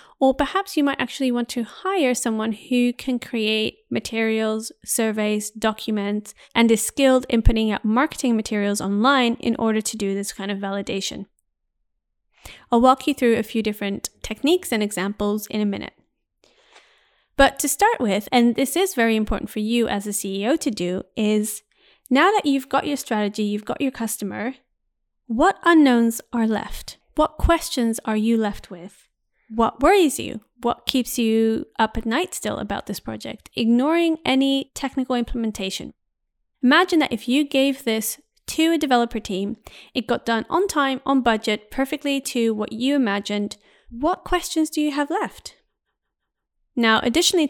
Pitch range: 220-275 Hz